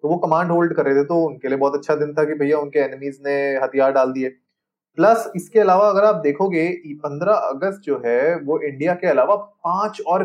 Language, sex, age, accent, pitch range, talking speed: Hindi, male, 30-49, native, 135-170 Hz, 220 wpm